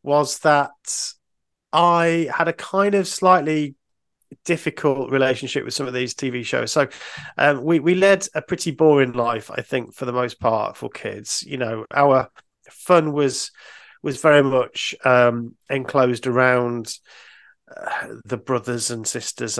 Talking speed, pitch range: 150 wpm, 120-150 Hz